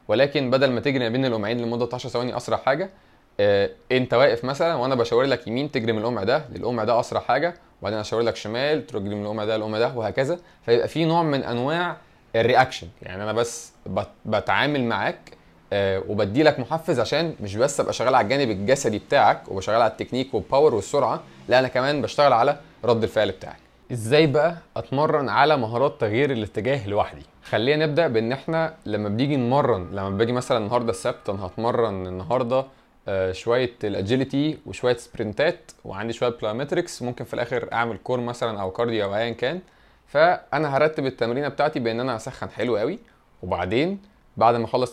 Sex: male